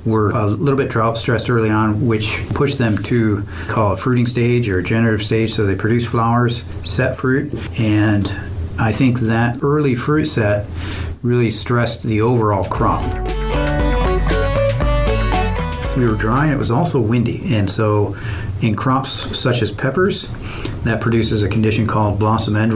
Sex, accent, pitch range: male, American, 105-120 Hz